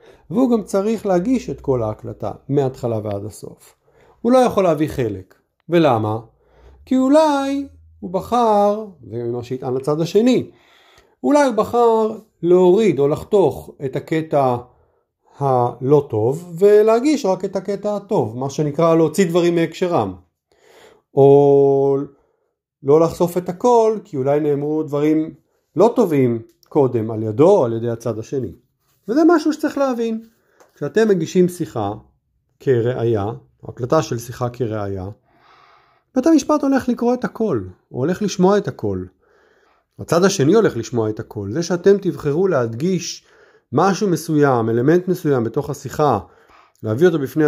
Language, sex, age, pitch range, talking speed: Hebrew, male, 50-69, 125-205 Hz, 135 wpm